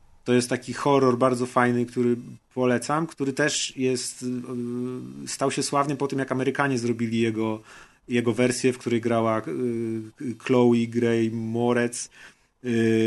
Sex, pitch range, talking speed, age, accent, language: male, 115-140 Hz, 135 wpm, 30-49, native, Polish